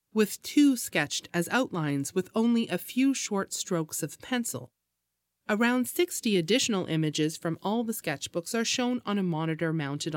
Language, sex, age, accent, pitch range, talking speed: English, female, 30-49, American, 150-230 Hz, 160 wpm